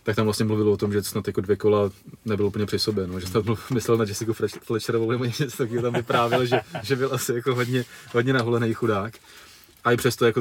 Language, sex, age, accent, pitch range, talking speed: Czech, male, 30-49, native, 100-115 Hz, 215 wpm